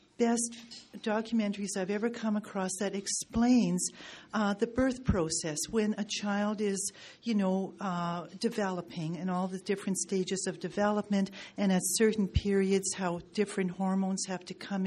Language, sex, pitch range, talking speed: English, female, 185-225 Hz, 150 wpm